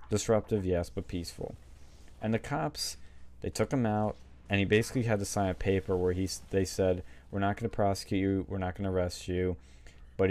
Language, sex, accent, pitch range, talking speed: English, male, American, 85-110 Hz, 210 wpm